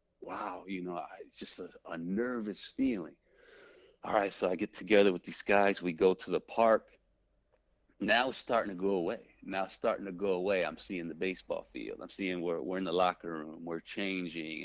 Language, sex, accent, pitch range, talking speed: English, male, American, 85-105 Hz, 210 wpm